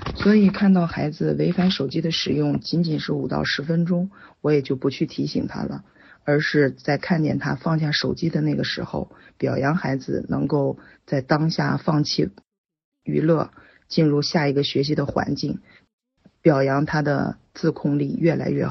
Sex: female